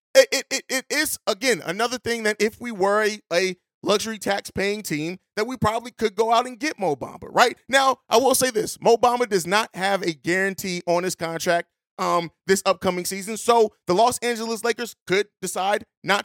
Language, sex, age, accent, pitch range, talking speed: English, male, 30-49, American, 180-230 Hz, 200 wpm